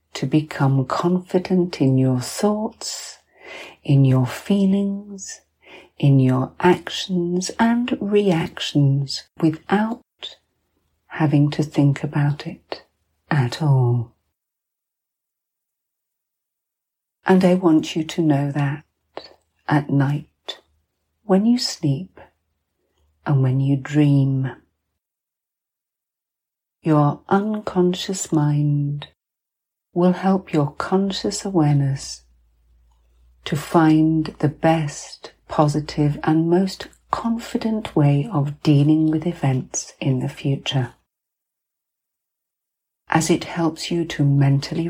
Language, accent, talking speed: English, British, 90 wpm